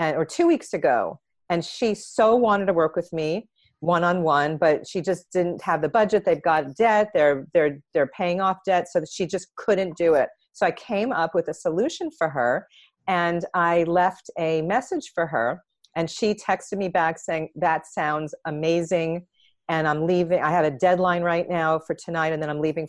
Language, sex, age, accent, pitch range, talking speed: English, female, 40-59, American, 160-185 Hz, 195 wpm